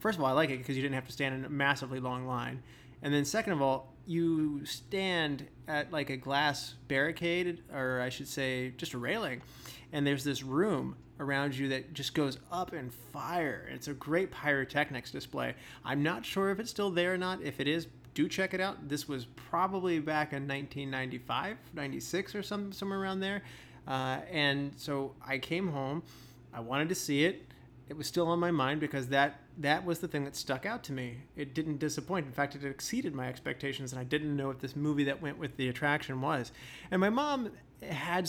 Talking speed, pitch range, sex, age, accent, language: 210 wpm, 135-160 Hz, male, 30-49, American, English